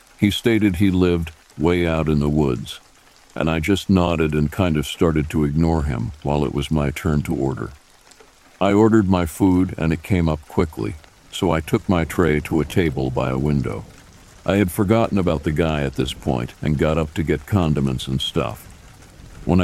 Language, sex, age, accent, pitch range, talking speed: English, male, 60-79, American, 75-90 Hz, 200 wpm